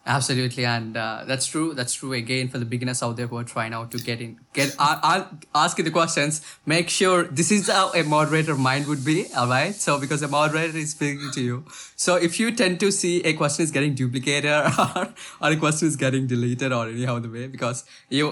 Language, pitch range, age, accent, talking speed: English, 125-150 Hz, 20-39, Indian, 225 wpm